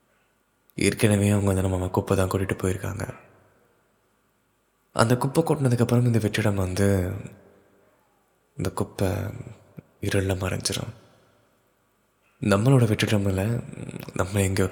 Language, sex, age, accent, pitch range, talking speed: Tamil, male, 20-39, native, 95-120 Hz, 85 wpm